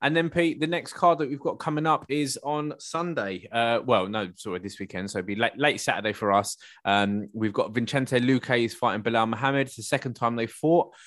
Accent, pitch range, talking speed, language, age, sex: British, 100-125 Hz, 235 wpm, English, 20-39, male